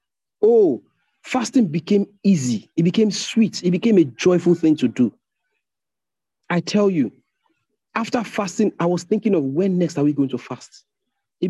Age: 40-59